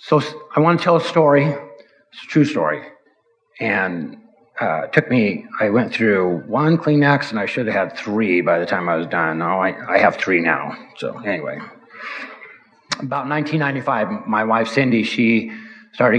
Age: 50-69